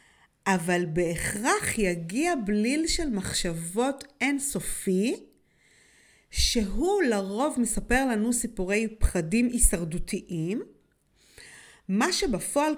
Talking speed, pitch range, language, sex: 75 wpm, 190-275 Hz, Hebrew, female